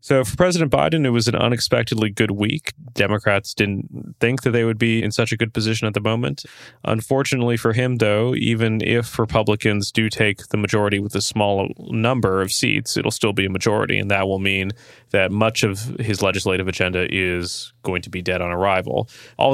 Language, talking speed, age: English, 200 wpm, 20-39